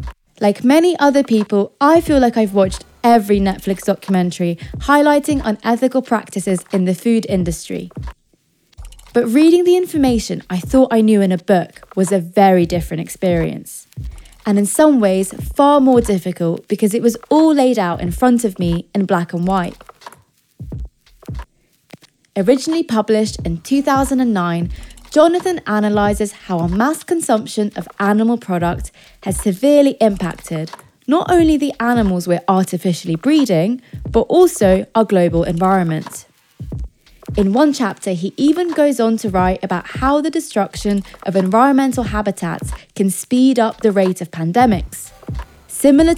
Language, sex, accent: English, female, British